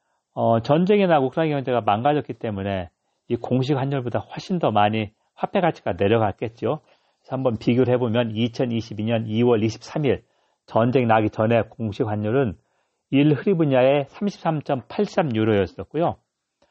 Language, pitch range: Korean, 110-165 Hz